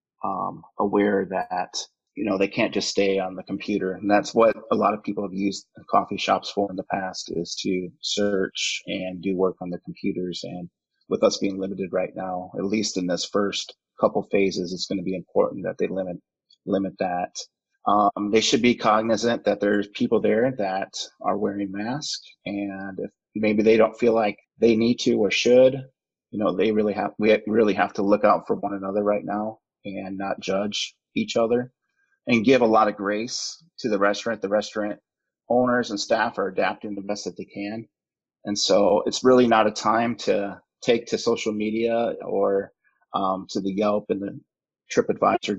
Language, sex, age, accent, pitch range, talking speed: English, male, 30-49, American, 95-110 Hz, 195 wpm